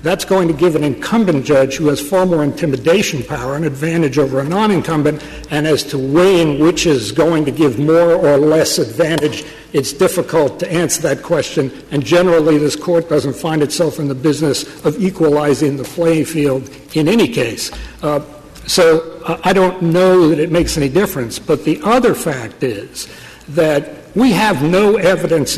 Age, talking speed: 60-79, 175 wpm